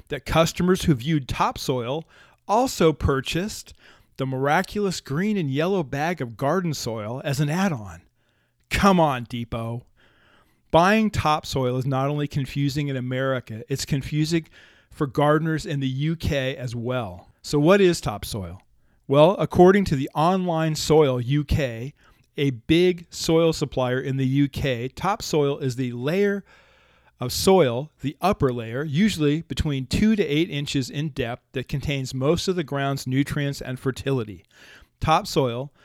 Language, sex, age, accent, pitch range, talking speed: English, male, 40-59, American, 130-160 Hz, 140 wpm